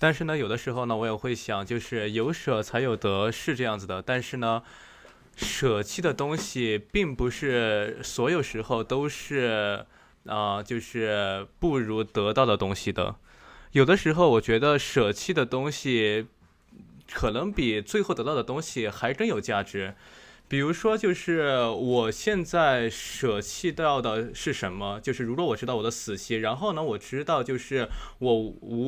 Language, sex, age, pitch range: Chinese, male, 20-39, 110-145 Hz